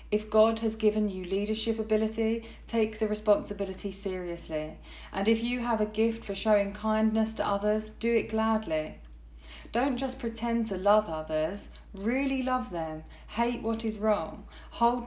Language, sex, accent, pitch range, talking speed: English, female, British, 180-220 Hz, 155 wpm